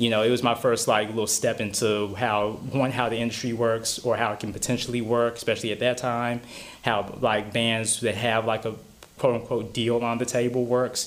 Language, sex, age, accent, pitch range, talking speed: English, male, 20-39, American, 105-120 Hz, 215 wpm